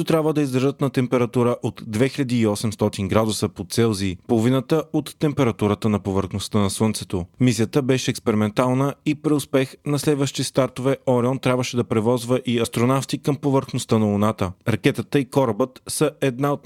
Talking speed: 150 wpm